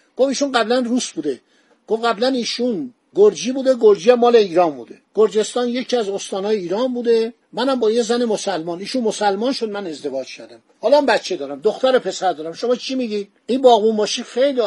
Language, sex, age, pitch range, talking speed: Persian, male, 50-69, 185-250 Hz, 185 wpm